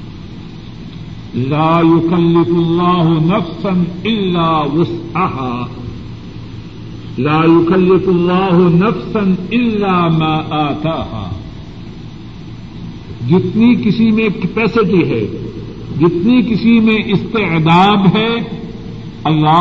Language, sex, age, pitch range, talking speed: Urdu, male, 50-69, 155-195 Hz, 60 wpm